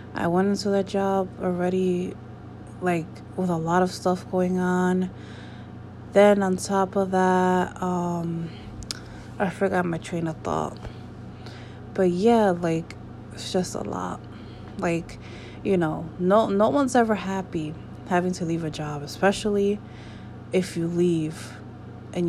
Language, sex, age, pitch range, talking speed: English, female, 20-39, 160-190 Hz, 135 wpm